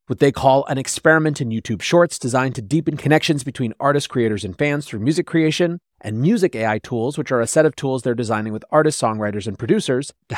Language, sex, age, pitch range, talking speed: English, male, 30-49, 115-155 Hz, 220 wpm